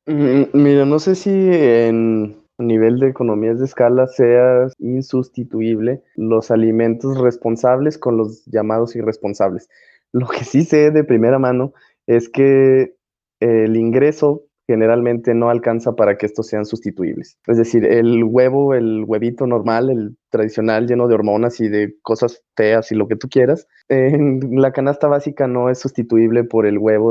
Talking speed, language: 155 wpm, Spanish